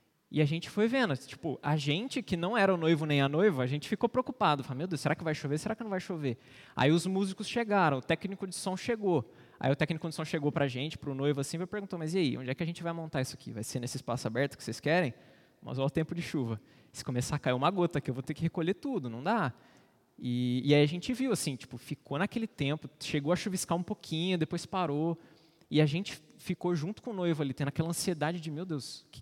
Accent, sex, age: Brazilian, male, 20-39